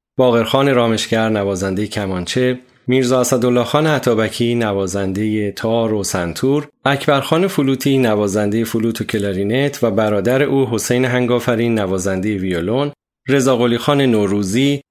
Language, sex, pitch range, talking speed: Persian, male, 110-135 Hz, 110 wpm